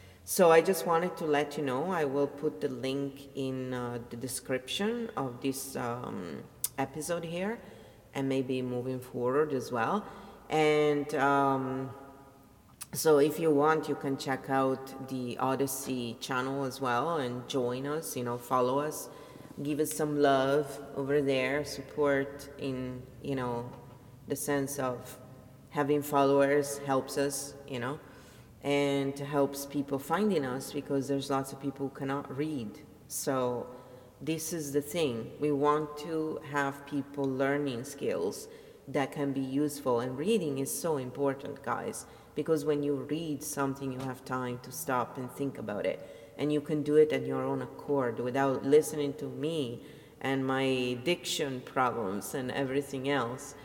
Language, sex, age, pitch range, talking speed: English, female, 30-49, 130-145 Hz, 155 wpm